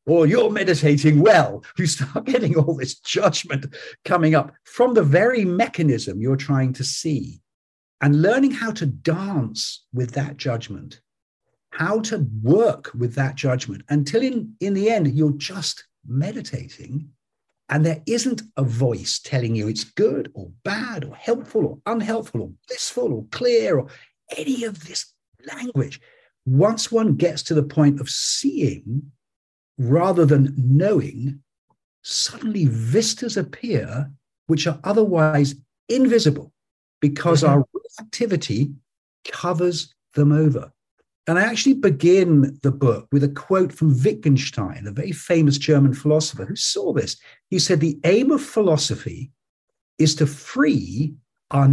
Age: 50-69